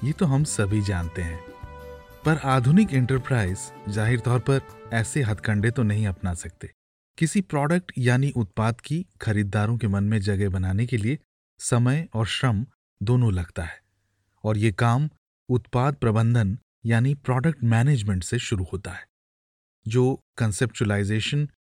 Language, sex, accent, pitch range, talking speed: Hindi, male, native, 105-135 Hz, 140 wpm